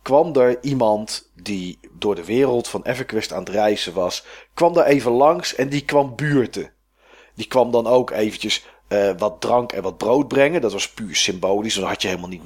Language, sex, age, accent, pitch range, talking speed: Dutch, male, 40-59, Dutch, 105-135 Hz, 205 wpm